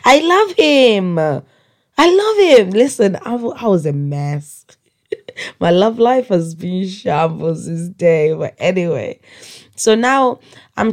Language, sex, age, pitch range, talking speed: English, female, 10-29, 145-195 Hz, 135 wpm